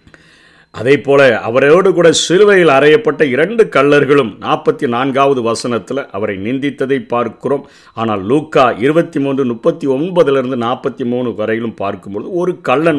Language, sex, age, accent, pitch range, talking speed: Tamil, male, 50-69, native, 120-165 Hz, 115 wpm